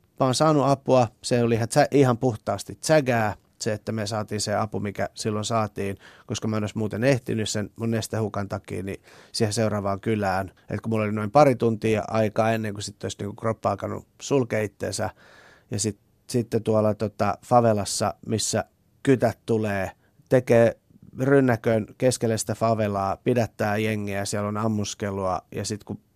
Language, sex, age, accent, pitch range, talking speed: Finnish, male, 30-49, native, 105-130 Hz, 155 wpm